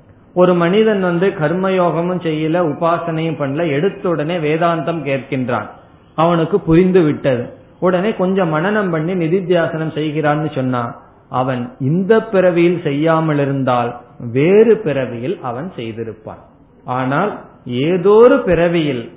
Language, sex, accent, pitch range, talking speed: Tamil, male, native, 135-180 Hz, 105 wpm